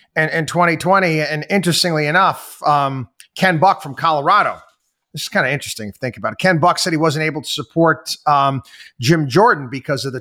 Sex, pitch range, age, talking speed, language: male, 135-170 Hz, 30-49, 200 wpm, English